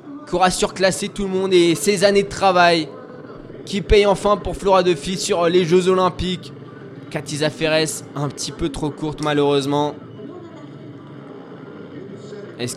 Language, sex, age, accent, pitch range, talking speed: French, male, 20-39, French, 145-190 Hz, 145 wpm